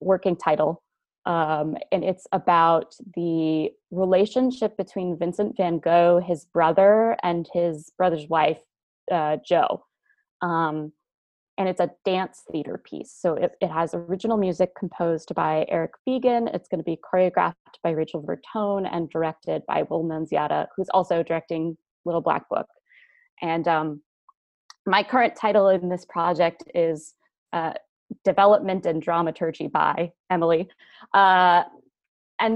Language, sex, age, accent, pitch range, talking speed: English, female, 20-39, American, 165-200 Hz, 135 wpm